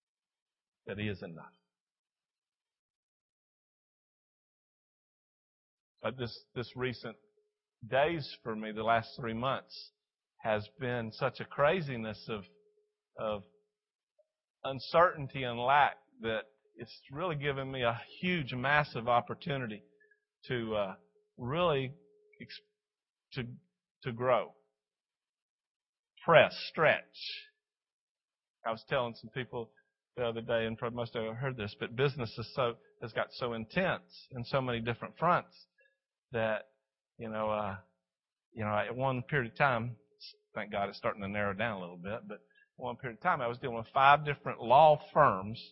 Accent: American